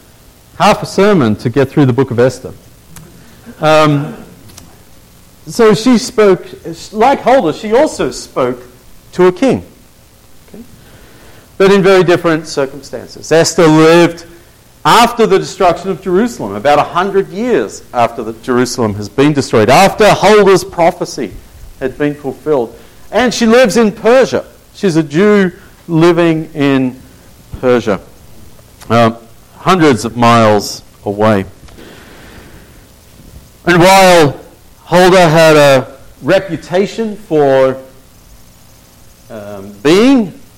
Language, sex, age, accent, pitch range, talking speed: English, male, 40-59, Australian, 125-190 Hz, 110 wpm